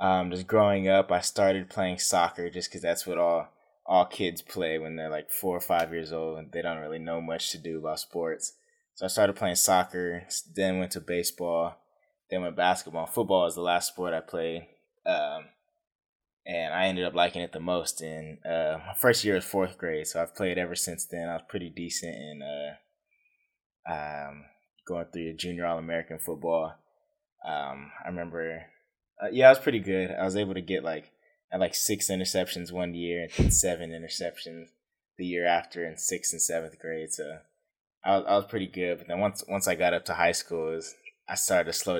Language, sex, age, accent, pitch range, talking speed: English, male, 20-39, American, 85-100 Hz, 205 wpm